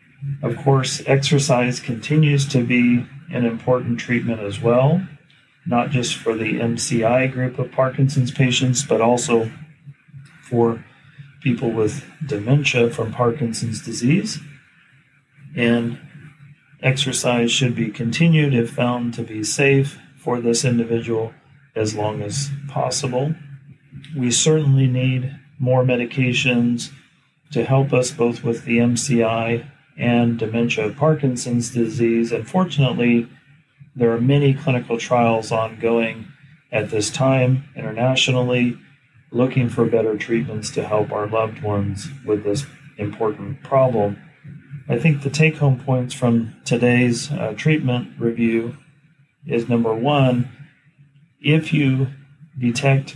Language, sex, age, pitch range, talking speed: English, male, 40-59, 115-140 Hz, 115 wpm